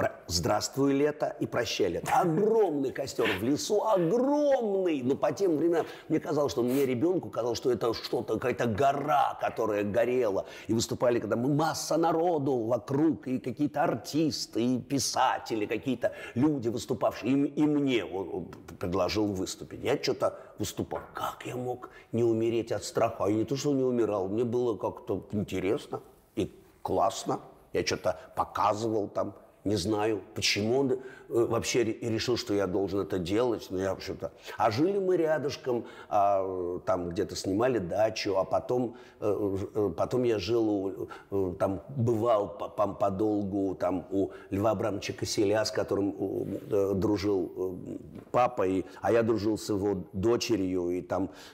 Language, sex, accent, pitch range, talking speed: Russian, male, native, 100-135 Hz, 140 wpm